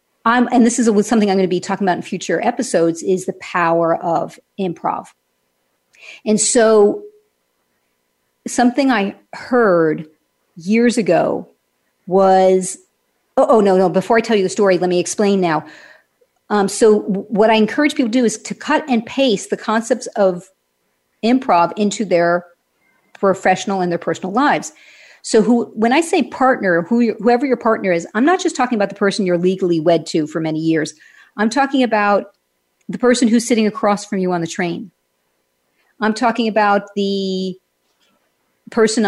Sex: female